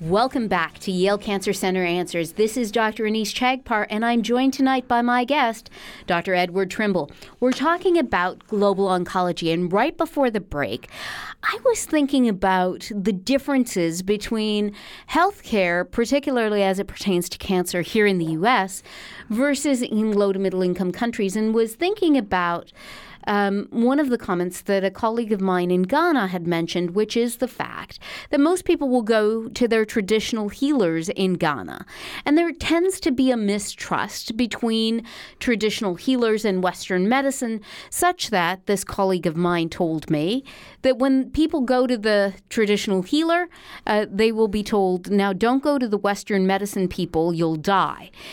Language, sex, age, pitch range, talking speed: English, female, 40-59, 185-250 Hz, 165 wpm